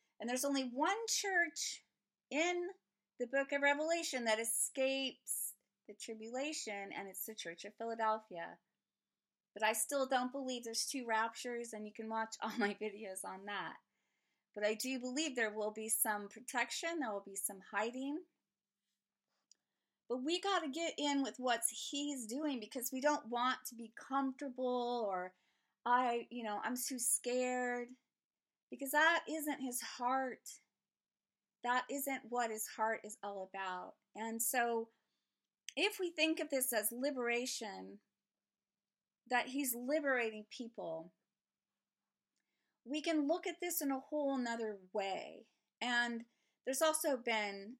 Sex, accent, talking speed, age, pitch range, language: female, American, 145 wpm, 30-49, 220-275 Hz, English